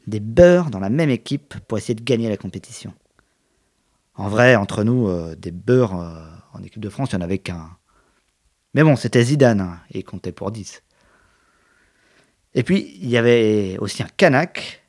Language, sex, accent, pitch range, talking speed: French, male, French, 105-145 Hz, 190 wpm